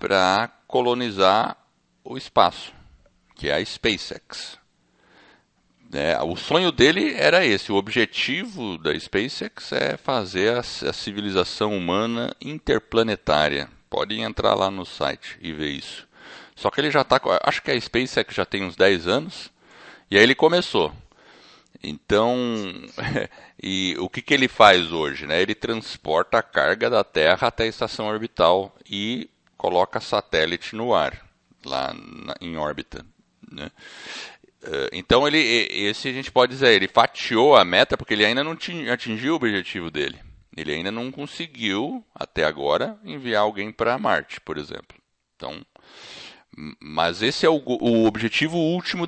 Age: 60-79